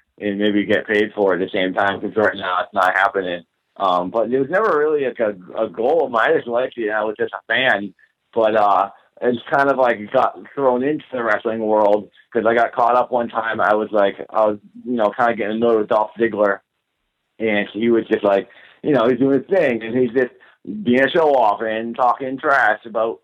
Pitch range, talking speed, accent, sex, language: 100-120 Hz, 230 wpm, American, male, English